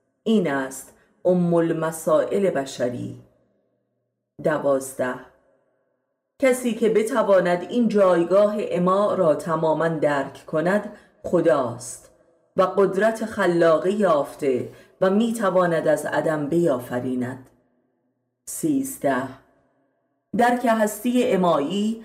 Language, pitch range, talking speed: Persian, 135-205 Hz, 80 wpm